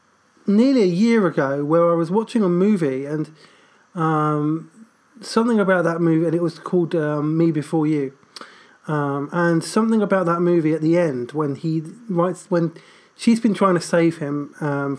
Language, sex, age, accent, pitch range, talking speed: English, male, 20-39, British, 150-185 Hz, 175 wpm